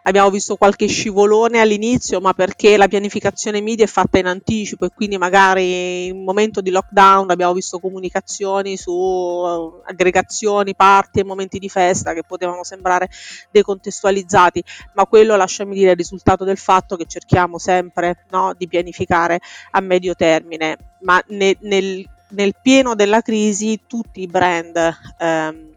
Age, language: 30-49, Italian